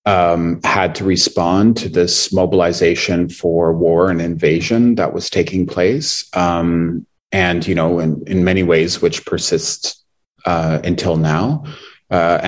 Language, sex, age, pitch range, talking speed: English, male, 30-49, 80-90 Hz, 130 wpm